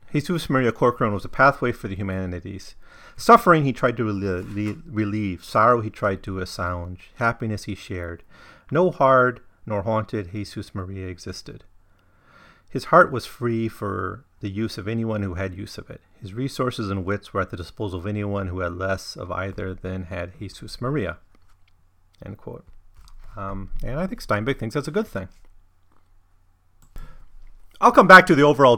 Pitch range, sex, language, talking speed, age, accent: 95-115 Hz, male, English, 170 wpm, 40-59, American